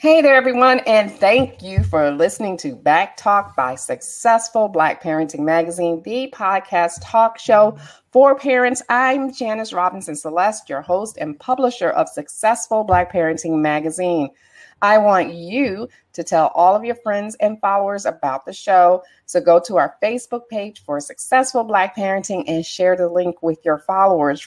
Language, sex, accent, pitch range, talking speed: English, female, American, 175-235 Hz, 160 wpm